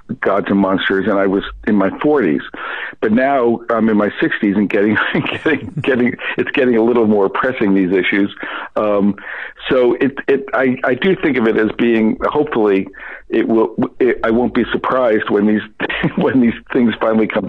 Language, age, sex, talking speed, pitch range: English, 50-69, male, 185 wpm, 105-135 Hz